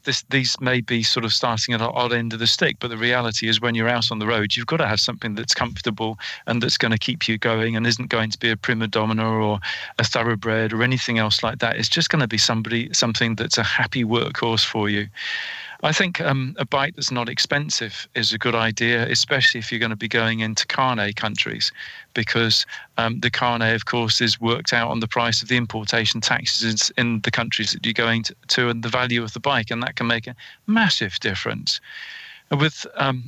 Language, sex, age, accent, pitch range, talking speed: English, male, 40-59, British, 115-130 Hz, 235 wpm